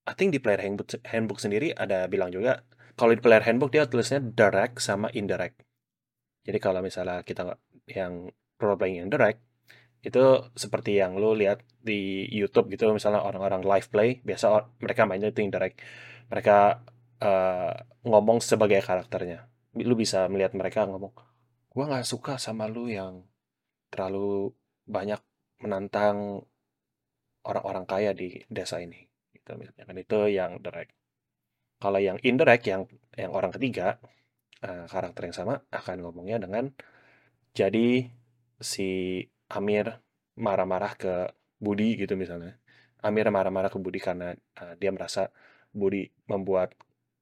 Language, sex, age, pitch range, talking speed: Indonesian, male, 20-39, 95-120 Hz, 130 wpm